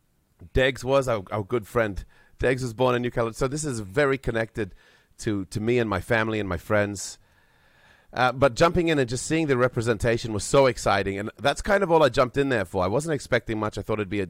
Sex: male